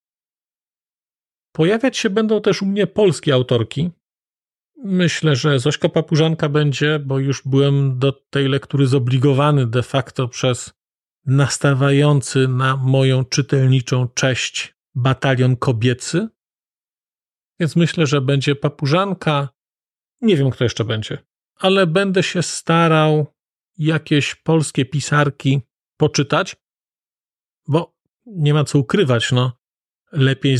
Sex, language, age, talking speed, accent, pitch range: male, Polish, 40-59, 110 wpm, native, 135-170 Hz